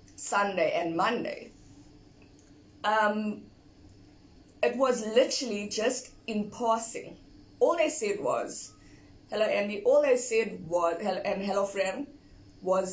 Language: English